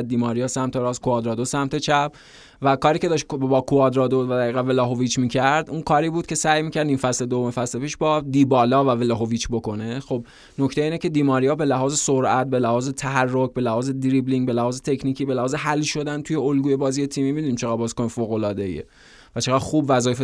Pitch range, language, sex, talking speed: 125-140 Hz, Persian, male, 200 wpm